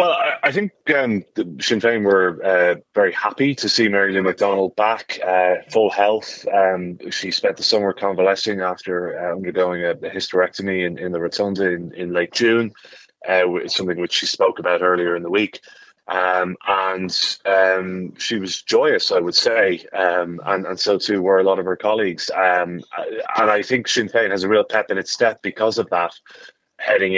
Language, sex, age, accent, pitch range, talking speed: English, male, 30-49, British, 90-100 Hz, 190 wpm